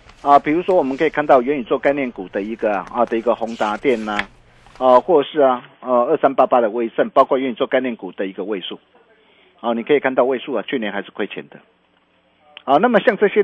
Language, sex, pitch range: Chinese, male, 120-185 Hz